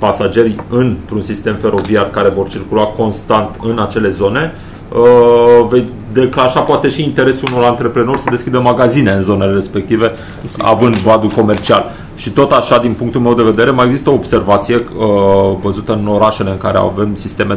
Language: Romanian